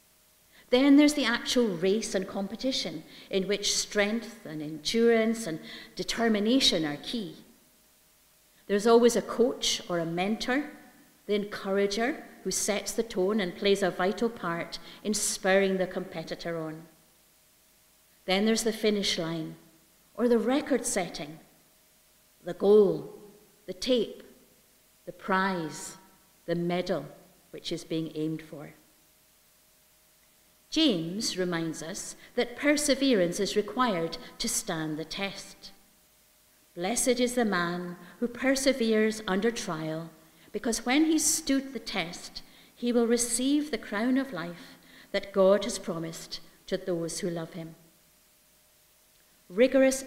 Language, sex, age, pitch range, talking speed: English, female, 50-69, 180-235 Hz, 125 wpm